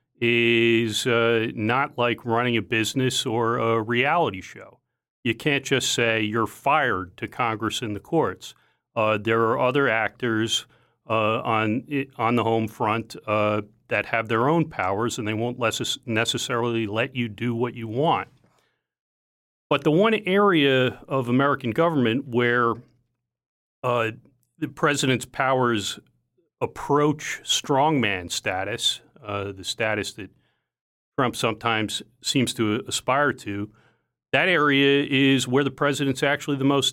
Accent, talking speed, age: American, 135 wpm, 40-59